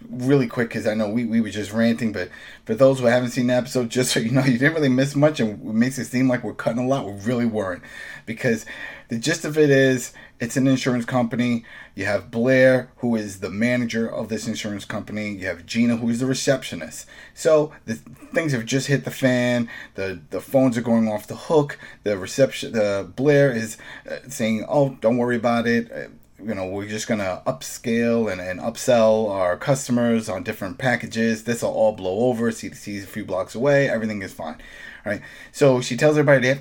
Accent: American